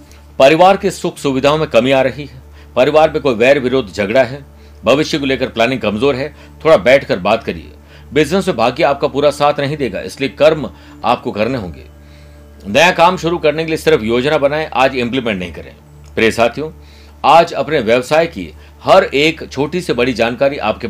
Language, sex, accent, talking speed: Hindi, male, native, 185 wpm